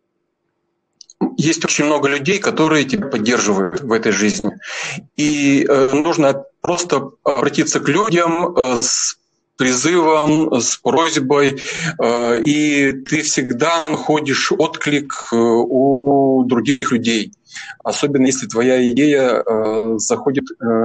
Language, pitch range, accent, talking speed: Russian, 120-155 Hz, native, 95 wpm